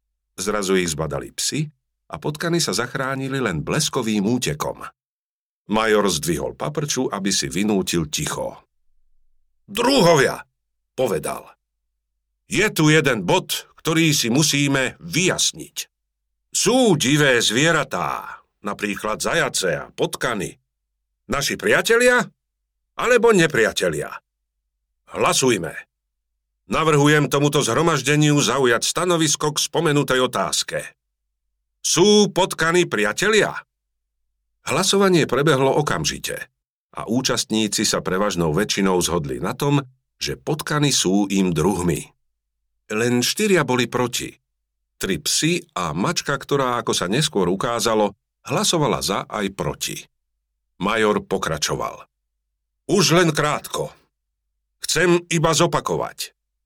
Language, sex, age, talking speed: Slovak, male, 50-69, 95 wpm